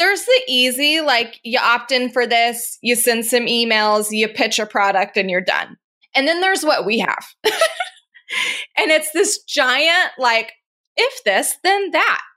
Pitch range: 205-260 Hz